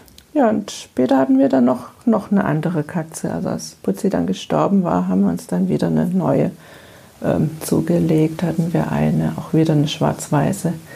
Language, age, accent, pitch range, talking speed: German, 50-69, German, 165-250 Hz, 180 wpm